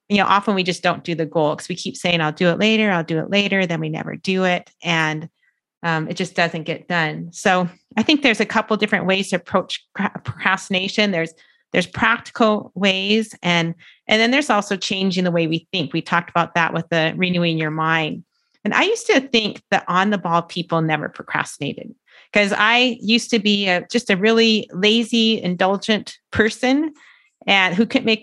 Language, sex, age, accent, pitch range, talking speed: English, female, 30-49, American, 175-225 Hz, 200 wpm